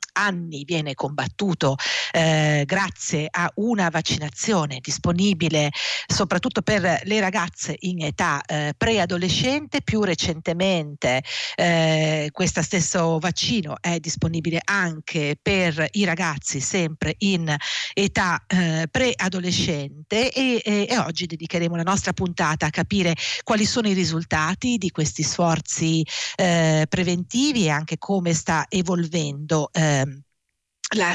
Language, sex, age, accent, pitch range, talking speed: Italian, female, 50-69, native, 155-185 Hz, 115 wpm